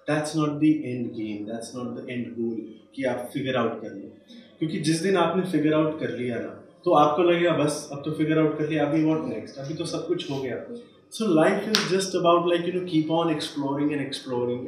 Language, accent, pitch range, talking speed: Hindi, native, 115-160 Hz, 235 wpm